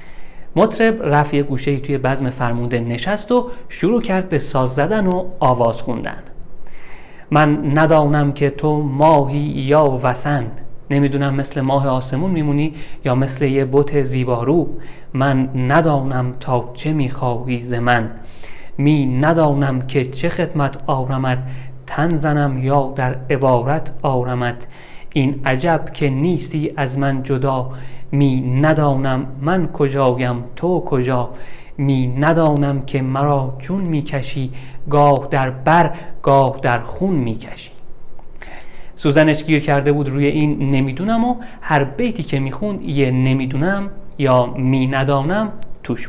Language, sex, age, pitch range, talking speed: Persian, male, 30-49, 130-155 Hz, 130 wpm